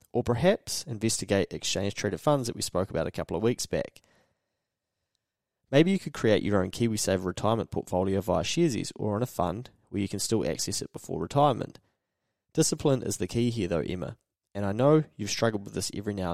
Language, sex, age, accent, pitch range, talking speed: English, male, 20-39, Australian, 95-120 Hz, 195 wpm